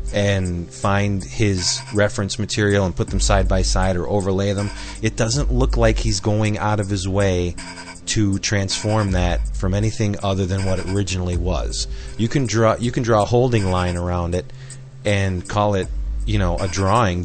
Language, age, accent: English, 30-49, American